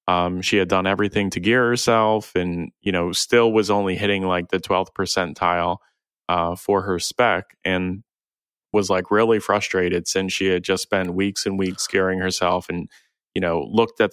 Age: 20-39